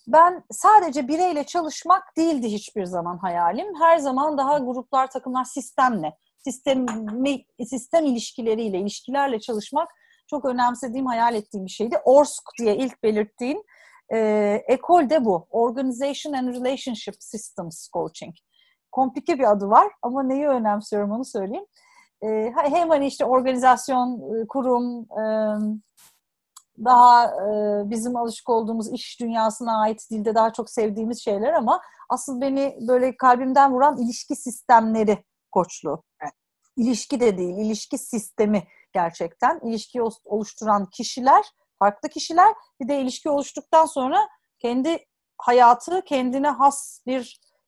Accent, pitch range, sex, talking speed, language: native, 220-280 Hz, female, 120 wpm, Turkish